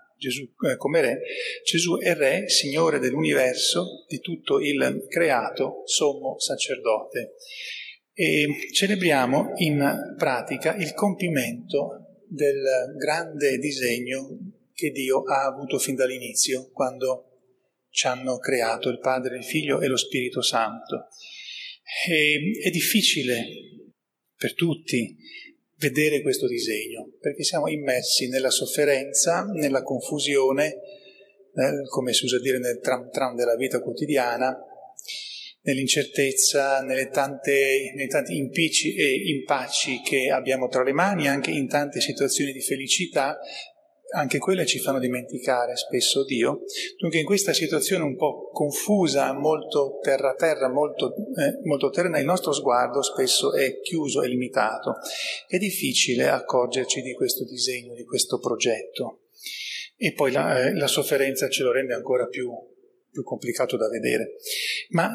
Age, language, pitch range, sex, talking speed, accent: 40-59, Italian, 130-210 Hz, male, 130 wpm, native